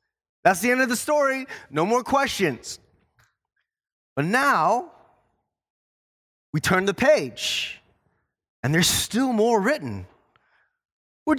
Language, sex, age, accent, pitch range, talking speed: English, male, 30-49, American, 170-235 Hz, 110 wpm